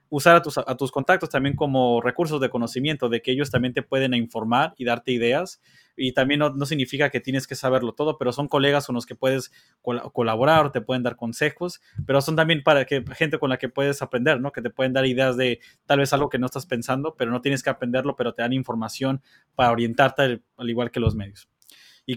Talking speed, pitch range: 230 wpm, 125-145 Hz